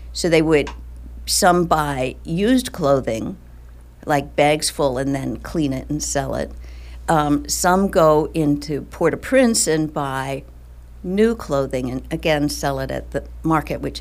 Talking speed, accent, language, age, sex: 145 wpm, American, English, 60-79, female